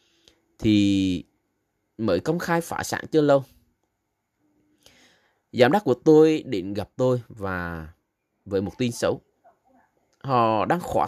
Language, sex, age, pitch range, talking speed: Vietnamese, male, 20-39, 100-145 Hz, 125 wpm